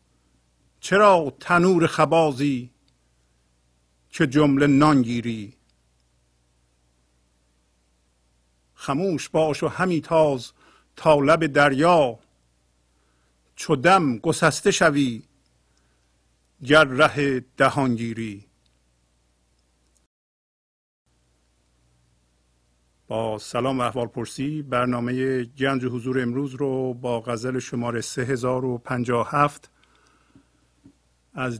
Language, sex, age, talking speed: Persian, male, 50-69, 65 wpm